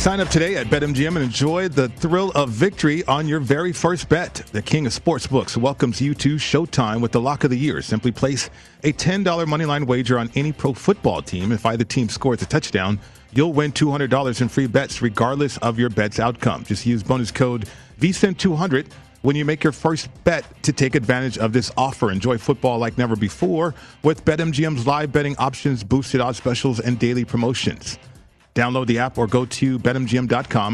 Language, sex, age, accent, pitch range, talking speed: English, male, 40-59, American, 120-145 Hz, 195 wpm